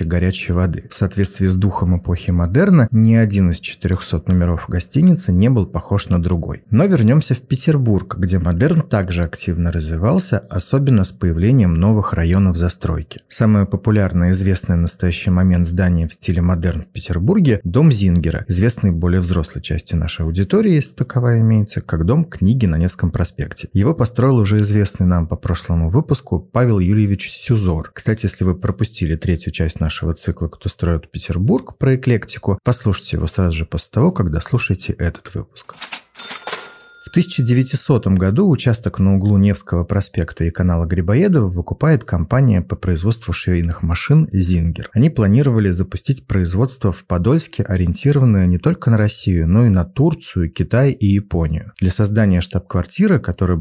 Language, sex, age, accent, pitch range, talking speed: Russian, male, 30-49, native, 90-115 Hz, 155 wpm